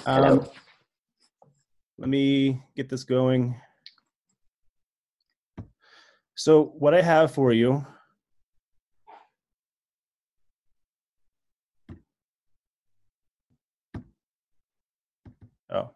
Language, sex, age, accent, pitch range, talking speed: English, male, 30-49, American, 125-150 Hz, 50 wpm